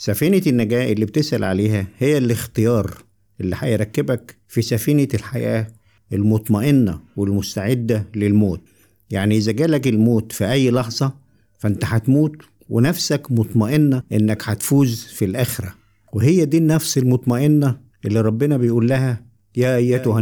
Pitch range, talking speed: 105-135 Hz, 120 wpm